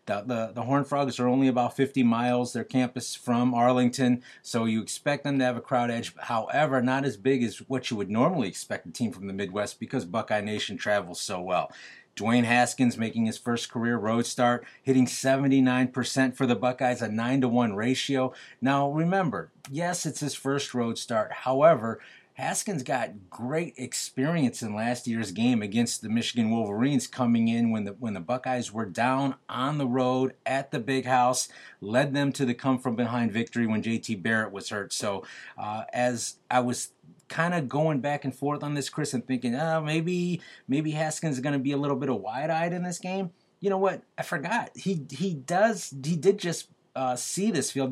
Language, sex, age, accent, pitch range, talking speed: English, male, 30-49, American, 120-140 Hz, 195 wpm